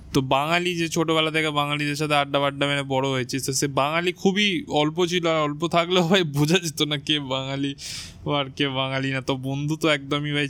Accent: native